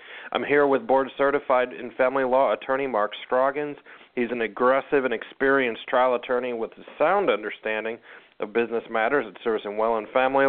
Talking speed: 175 wpm